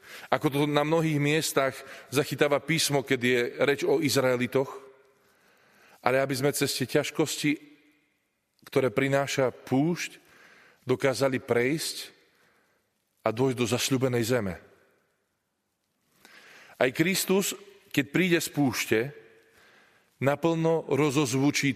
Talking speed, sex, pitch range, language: 100 wpm, male, 125-155 Hz, Slovak